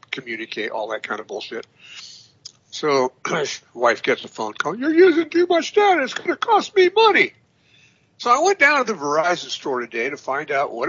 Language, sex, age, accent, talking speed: English, male, 60-79, American, 200 wpm